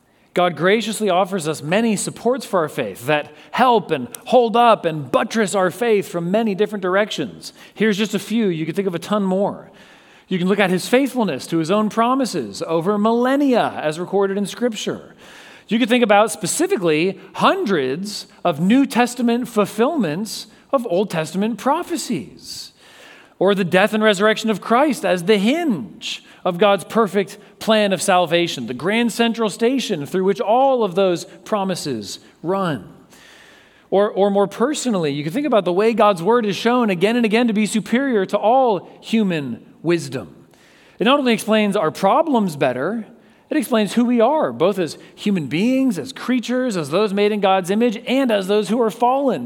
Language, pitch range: English, 190-235 Hz